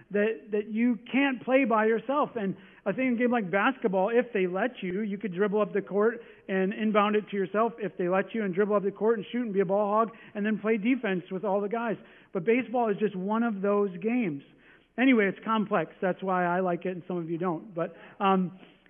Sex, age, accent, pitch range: male, 40-59, American, 190-235 Hz